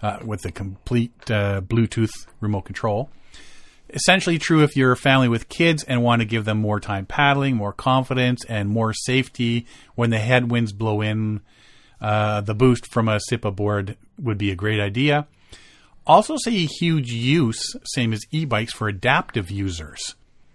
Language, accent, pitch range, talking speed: English, American, 105-135 Hz, 165 wpm